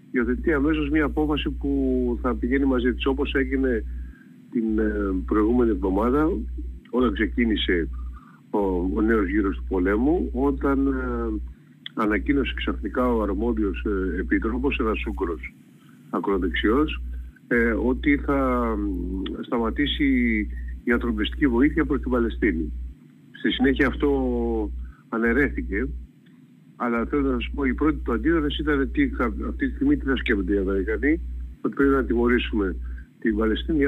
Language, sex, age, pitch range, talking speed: Greek, male, 50-69, 105-140 Hz, 130 wpm